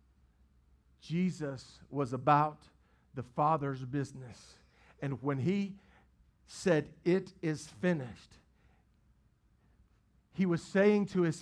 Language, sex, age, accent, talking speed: English, male, 50-69, American, 95 wpm